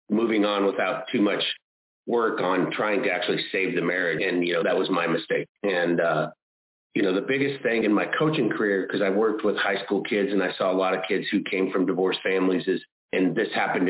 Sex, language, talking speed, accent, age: male, English, 235 wpm, American, 30-49